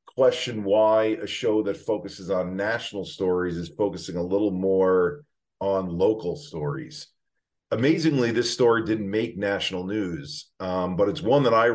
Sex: male